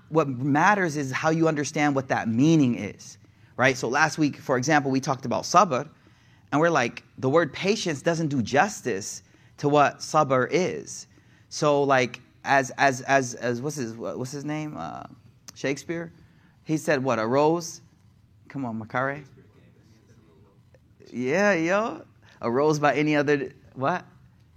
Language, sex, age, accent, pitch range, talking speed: English, male, 30-49, American, 120-160 Hz, 155 wpm